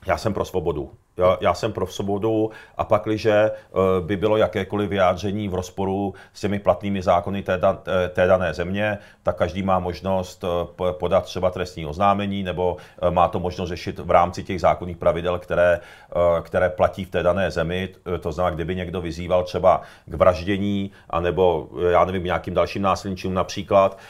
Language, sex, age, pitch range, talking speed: Czech, male, 40-59, 90-100 Hz, 160 wpm